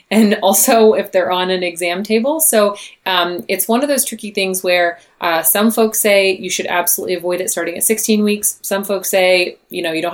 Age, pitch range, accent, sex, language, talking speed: 30-49, 175-200 Hz, American, female, English, 220 wpm